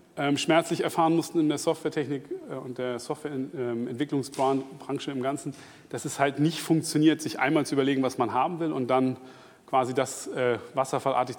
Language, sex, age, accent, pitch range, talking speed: German, male, 30-49, German, 130-155 Hz, 175 wpm